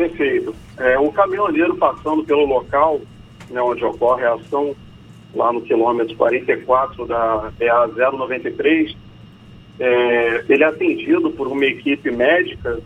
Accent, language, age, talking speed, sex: Brazilian, Portuguese, 40-59, 135 wpm, male